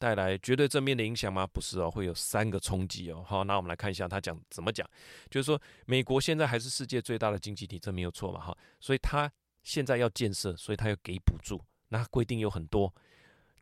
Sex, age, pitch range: male, 20-39, 95-130 Hz